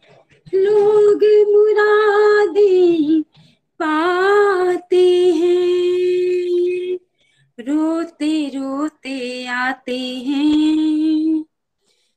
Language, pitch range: Hindi, 255-355 Hz